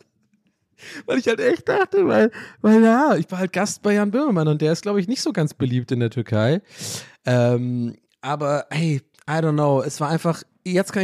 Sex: male